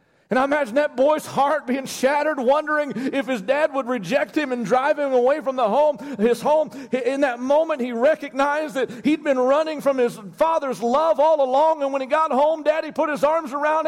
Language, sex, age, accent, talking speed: English, male, 40-59, American, 210 wpm